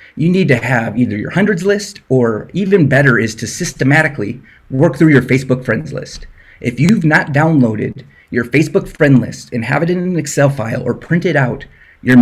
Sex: male